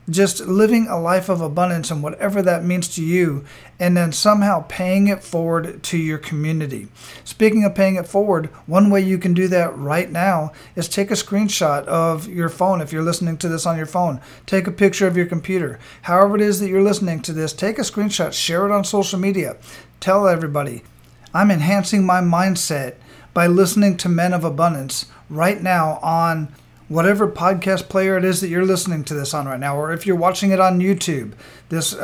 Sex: male